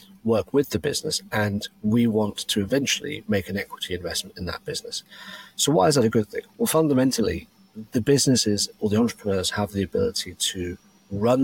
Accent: British